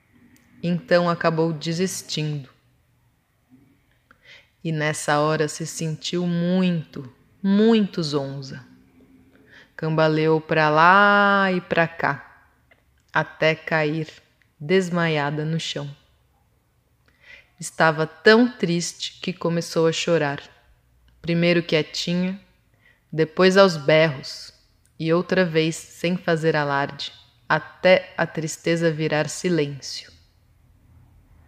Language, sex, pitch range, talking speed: Portuguese, female, 125-175 Hz, 85 wpm